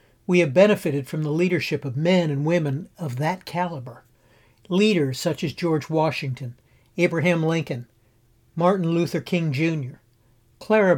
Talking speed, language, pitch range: 135 wpm, English, 120-175 Hz